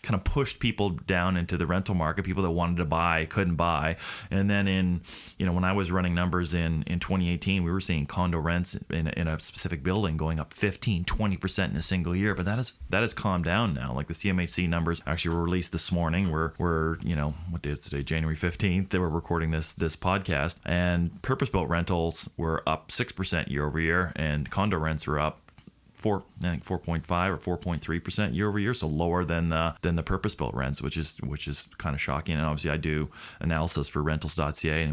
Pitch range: 75-90 Hz